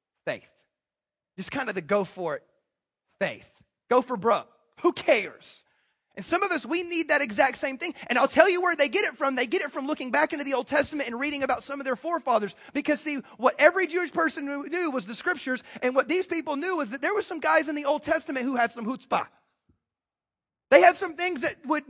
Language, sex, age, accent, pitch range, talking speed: English, male, 30-49, American, 250-320 Hz, 235 wpm